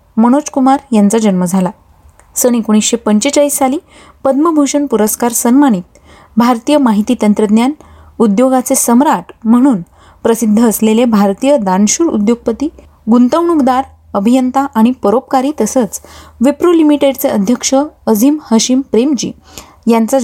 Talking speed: 105 wpm